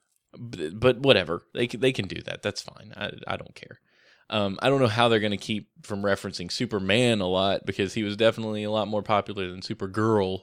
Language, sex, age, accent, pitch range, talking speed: English, male, 20-39, American, 95-125 Hz, 205 wpm